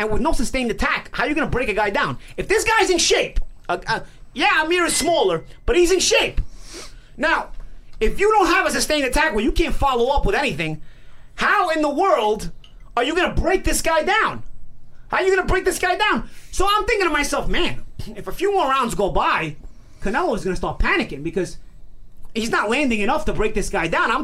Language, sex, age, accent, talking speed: English, male, 30-49, American, 235 wpm